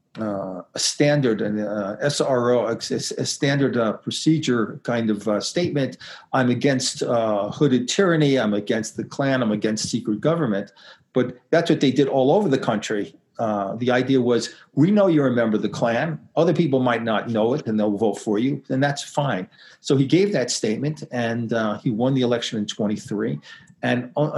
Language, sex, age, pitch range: English, male, 40-59, 115-145 Hz